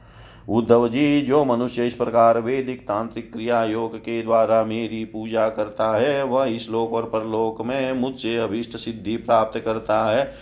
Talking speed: 160 wpm